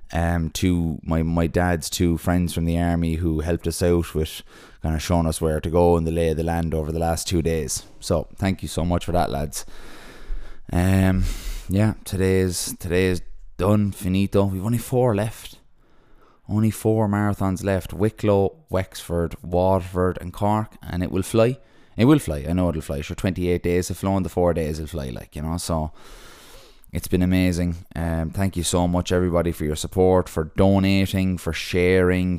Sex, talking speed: male, 190 wpm